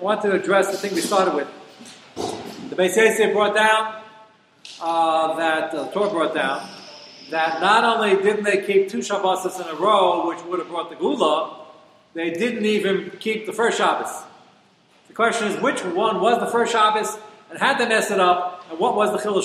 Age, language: 40-59, English